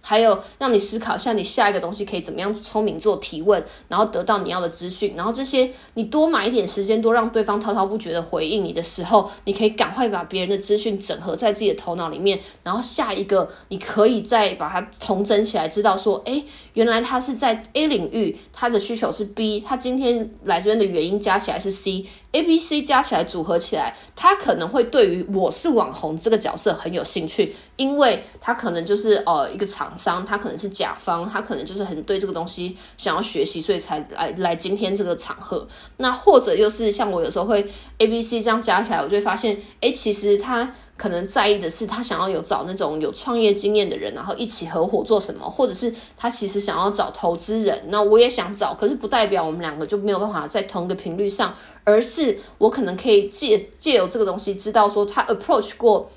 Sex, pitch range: female, 195-235 Hz